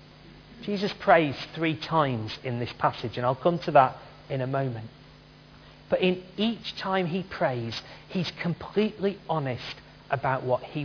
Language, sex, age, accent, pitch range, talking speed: English, male, 40-59, British, 130-180 Hz, 150 wpm